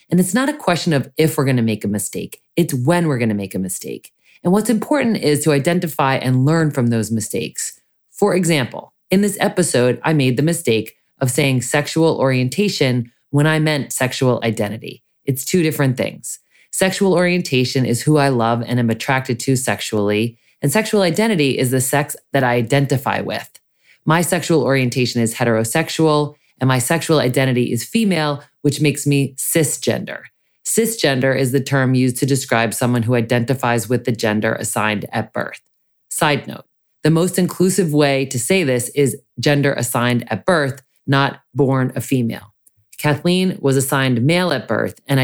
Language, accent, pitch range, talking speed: English, American, 120-160 Hz, 170 wpm